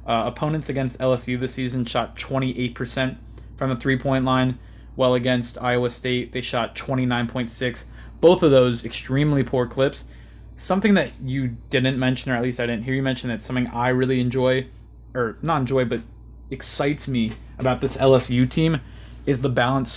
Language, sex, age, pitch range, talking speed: English, male, 20-39, 120-140 Hz, 170 wpm